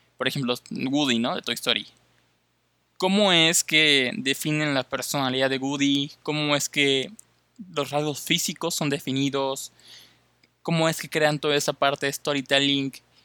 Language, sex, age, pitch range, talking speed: Spanish, male, 20-39, 130-165 Hz, 145 wpm